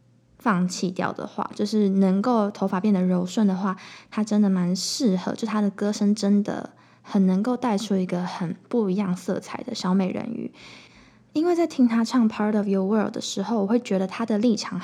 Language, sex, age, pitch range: Chinese, female, 10-29, 190-230 Hz